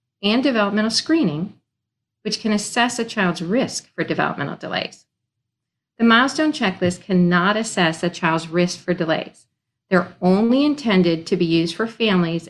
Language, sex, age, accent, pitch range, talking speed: English, female, 40-59, American, 165-220 Hz, 145 wpm